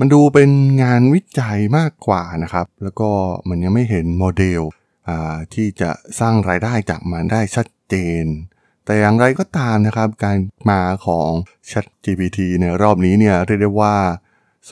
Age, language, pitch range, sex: 20-39, Thai, 90-120 Hz, male